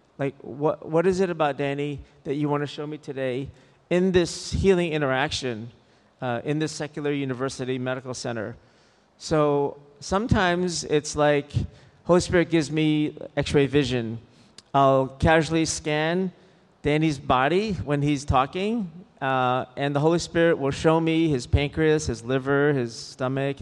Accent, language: American, English